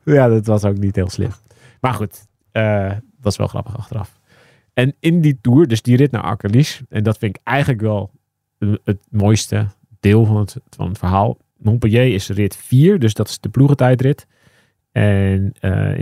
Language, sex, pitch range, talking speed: Dutch, male, 100-115 Hz, 185 wpm